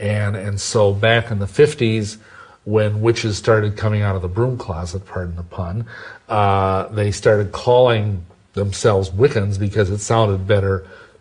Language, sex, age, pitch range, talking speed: English, male, 40-59, 95-110 Hz, 155 wpm